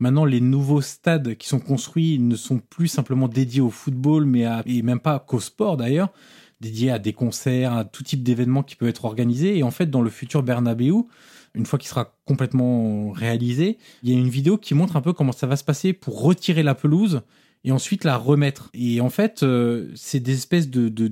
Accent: French